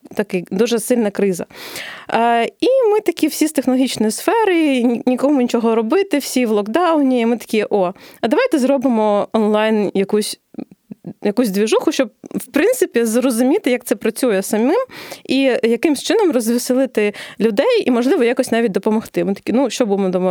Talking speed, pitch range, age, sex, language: 155 wpm, 205-255 Hz, 20-39, female, Ukrainian